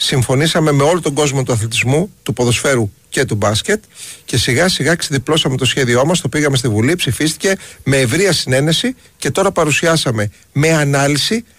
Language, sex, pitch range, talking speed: Greek, male, 125-170 Hz, 160 wpm